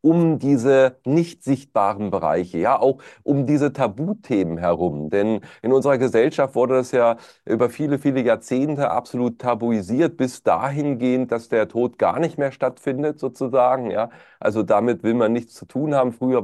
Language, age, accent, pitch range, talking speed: German, 30-49, German, 105-135 Hz, 160 wpm